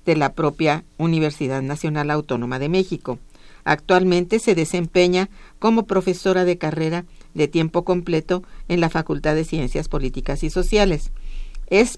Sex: female